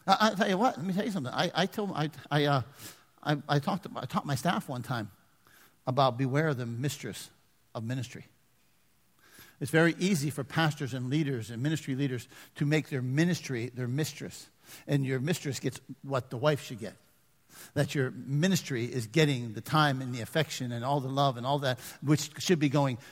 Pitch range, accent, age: 140-200 Hz, American, 60-79